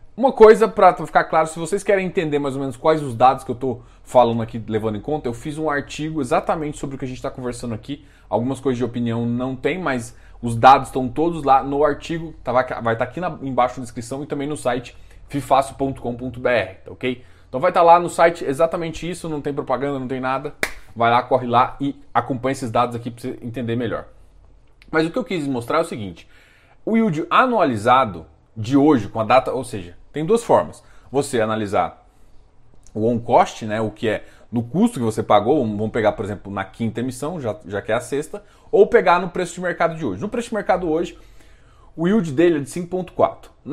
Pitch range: 120-155 Hz